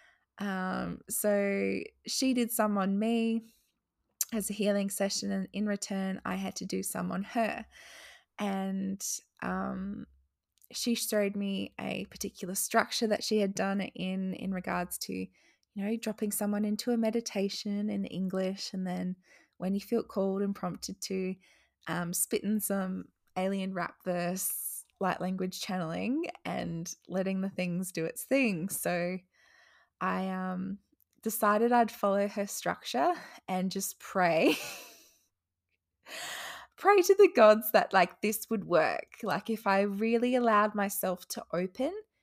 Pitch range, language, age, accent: 185-215 Hz, English, 20-39, Australian